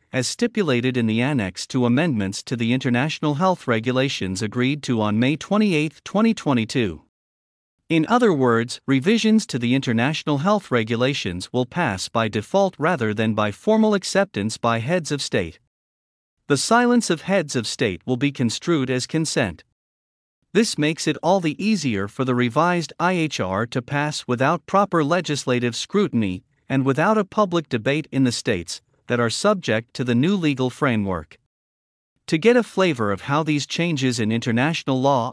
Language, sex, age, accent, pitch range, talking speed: English, male, 50-69, American, 115-160 Hz, 160 wpm